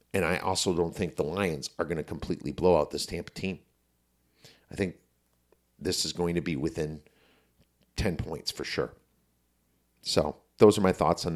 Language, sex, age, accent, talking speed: English, male, 50-69, American, 180 wpm